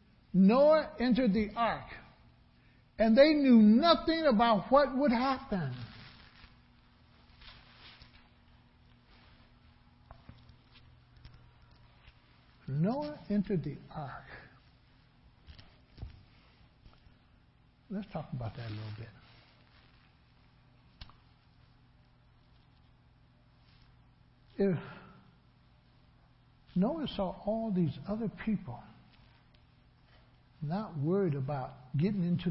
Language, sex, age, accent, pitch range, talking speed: English, male, 60-79, American, 150-210 Hz, 65 wpm